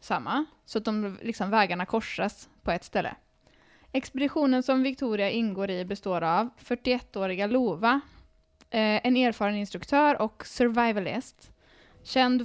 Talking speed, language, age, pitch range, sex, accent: 120 wpm, Swedish, 10-29, 190-245 Hz, female, native